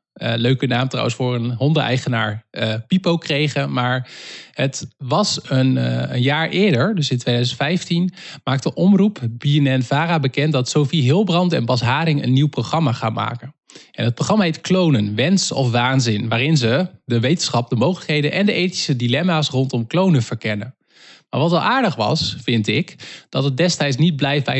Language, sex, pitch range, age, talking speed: Dutch, male, 125-160 Hz, 20-39, 170 wpm